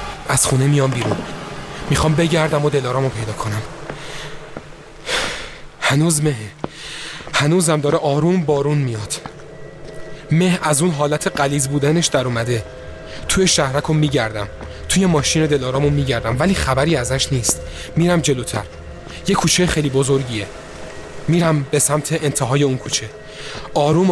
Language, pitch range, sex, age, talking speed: Persian, 110-155 Hz, male, 30-49, 120 wpm